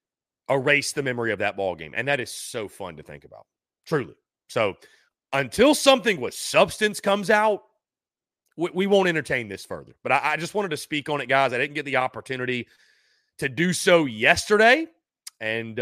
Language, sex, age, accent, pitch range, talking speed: English, male, 30-49, American, 125-190 Hz, 185 wpm